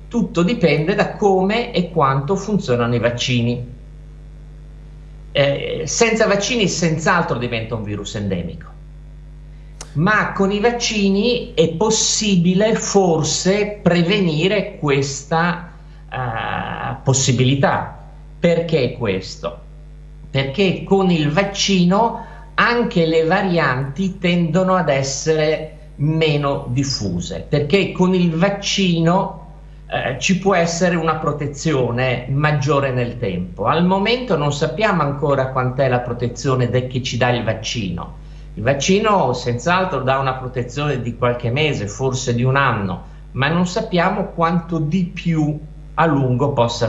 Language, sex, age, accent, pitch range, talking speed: Italian, male, 50-69, native, 135-185 Hz, 115 wpm